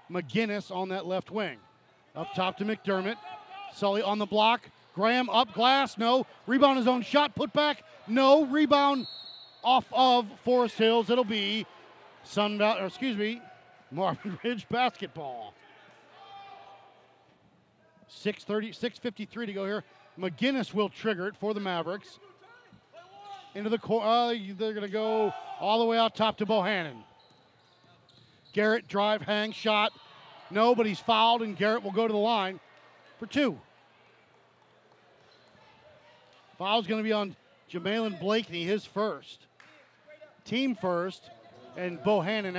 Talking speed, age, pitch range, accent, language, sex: 130 wpm, 40-59, 185-245 Hz, American, English, male